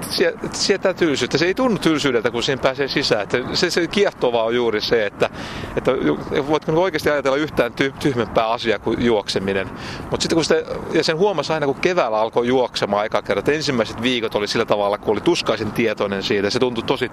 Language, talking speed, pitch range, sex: Finnish, 170 wpm, 120-170 Hz, male